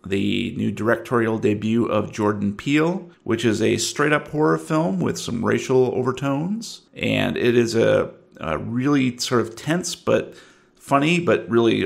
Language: English